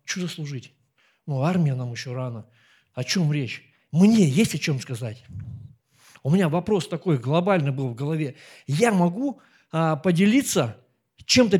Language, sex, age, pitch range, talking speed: Russian, male, 50-69, 130-180 Hz, 145 wpm